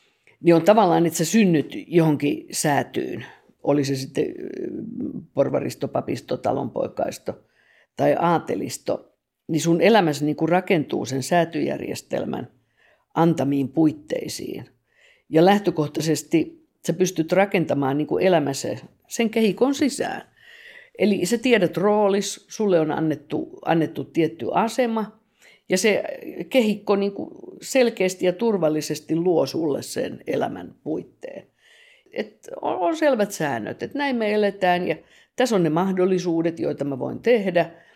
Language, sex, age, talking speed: Finnish, female, 50-69, 115 wpm